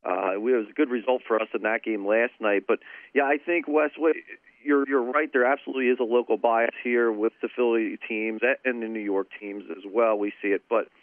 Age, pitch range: 40-59, 110-135 Hz